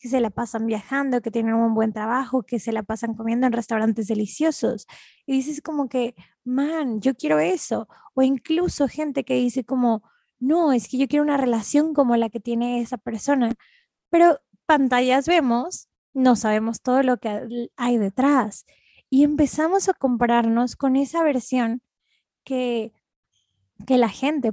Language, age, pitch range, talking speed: Spanish, 20-39, 220-265 Hz, 160 wpm